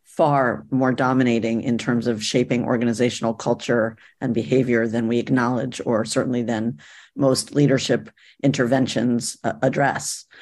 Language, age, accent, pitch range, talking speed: English, 50-69, American, 125-140 Hz, 125 wpm